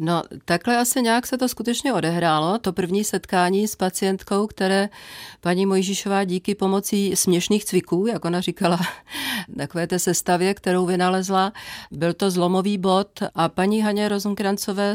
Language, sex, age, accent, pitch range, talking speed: Czech, female, 40-59, native, 160-190 Hz, 150 wpm